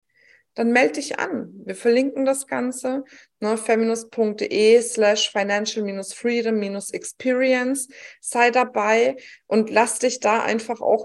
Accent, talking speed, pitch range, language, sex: German, 125 wpm, 220-270 Hz, German, female